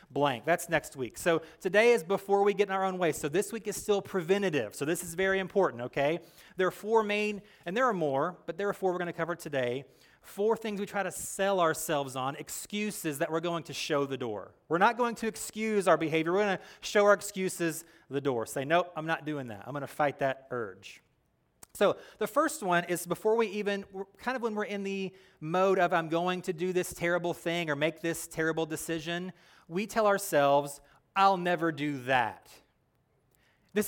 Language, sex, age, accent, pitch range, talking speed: English, male, 30-49, American, 165-205 Hz, 215 wpm